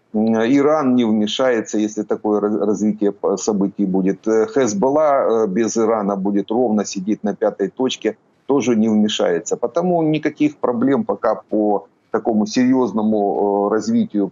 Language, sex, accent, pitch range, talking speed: Ukrainian, male, native, 105-125 Hz, 115 wpm